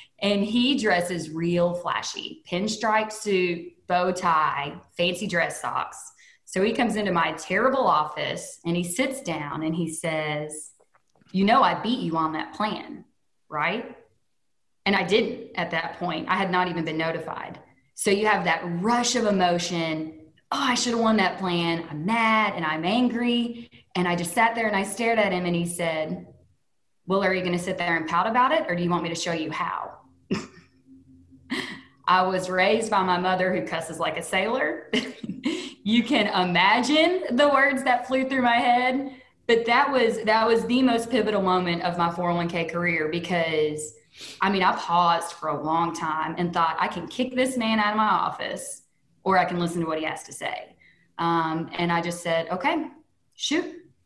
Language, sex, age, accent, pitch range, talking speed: English, female, 20-39, American, 170-230 Hz, 190 wpm